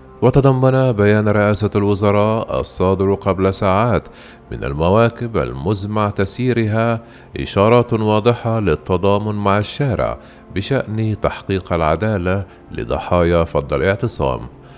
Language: Arabic